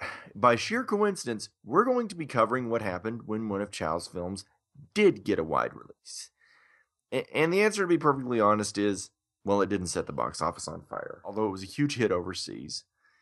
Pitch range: 95-135 Hz